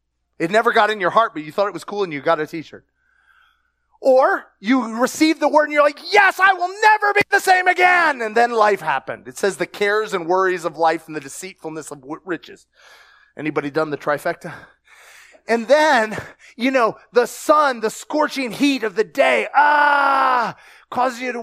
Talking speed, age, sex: 195 wpm, 30-49, male